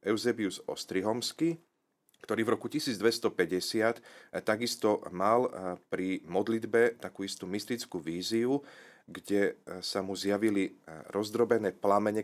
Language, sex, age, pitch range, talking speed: Slovak, male, 30-49, 90-110 Hz, 100 wpm